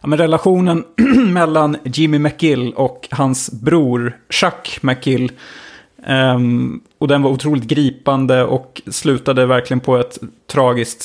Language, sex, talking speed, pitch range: Swedish, male, 120 wpm, 125-145 Hz